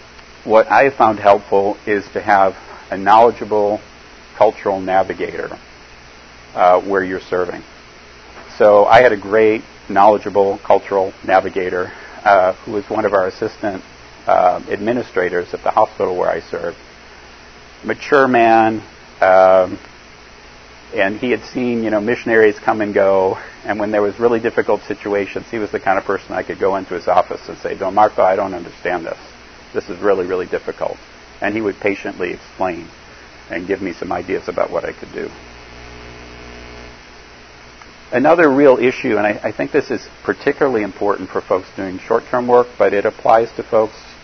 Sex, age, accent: male, 50-69, American